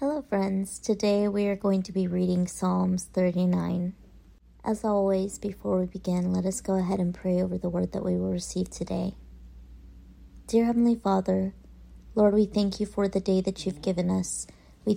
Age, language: 30-49, English